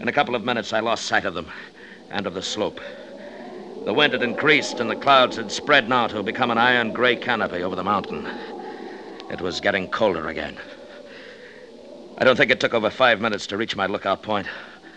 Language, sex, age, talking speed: English, male, 60-79, 200 wpm